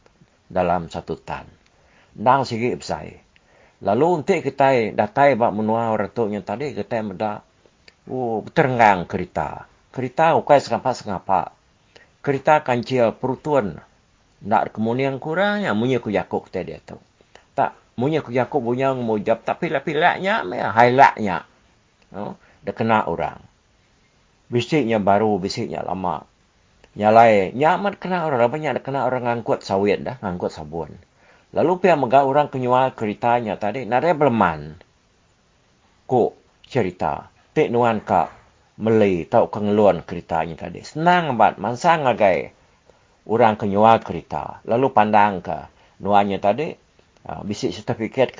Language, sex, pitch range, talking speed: English, male, 105-135 Hz, 135 wpm